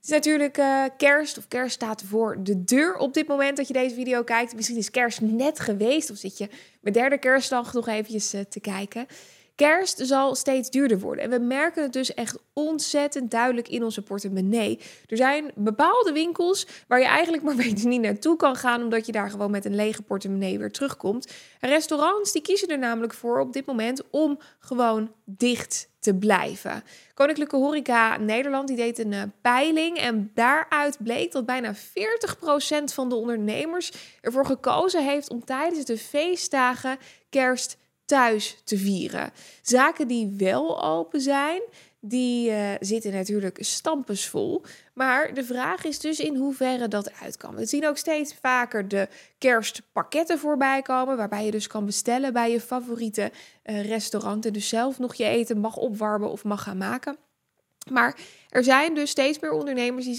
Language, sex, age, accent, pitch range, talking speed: Dutch, female, 20-39, Dutch, 220-285 Hz, 175 wpm